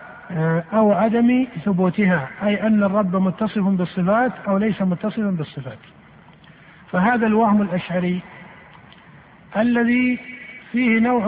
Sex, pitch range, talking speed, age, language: male, 185-225 Hz, 95 wpm, 50-69, Arabic